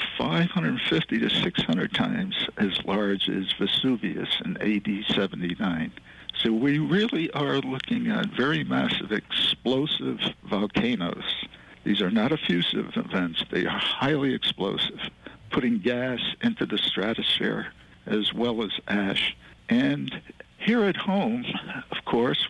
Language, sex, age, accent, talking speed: English, male, 60-79, American, 120 wpm